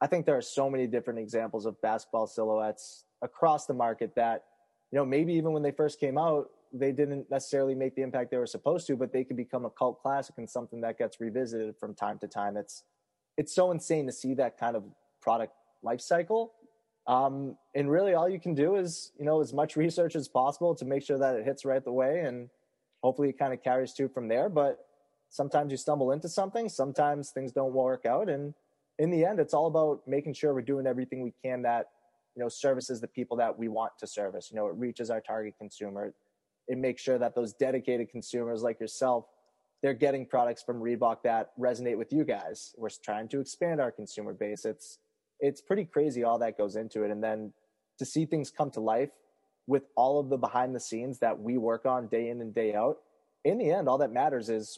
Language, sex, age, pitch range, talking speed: English, male, 20-39, 115-140 Hz, 225 wpm